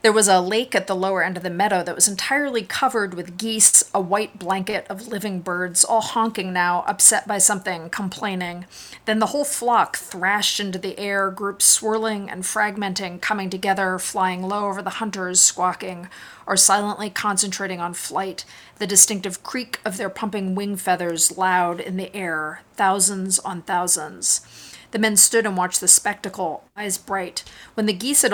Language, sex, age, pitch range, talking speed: English, female, 40-59, 180-210 Hz, 175 wpm